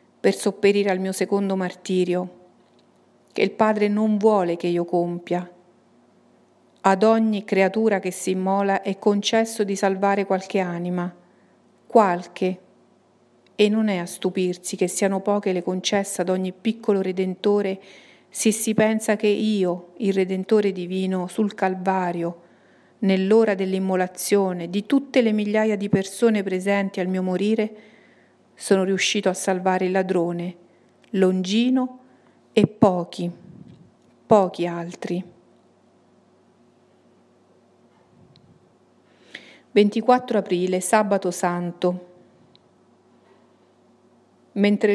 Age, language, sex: 50-69, Italian, female